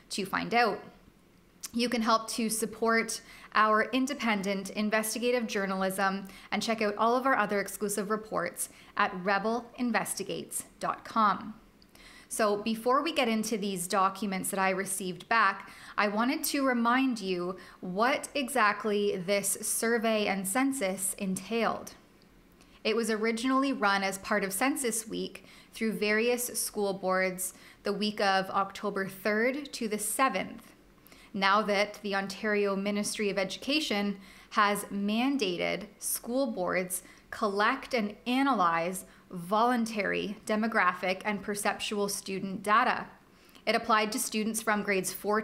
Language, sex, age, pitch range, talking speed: English, female, 20-39, 195-230 Hz, 125 wpm